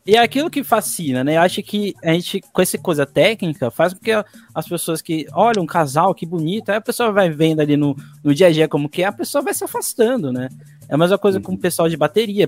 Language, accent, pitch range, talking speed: Portuguese, Brazilian, 135-200 Hz, 265 wpm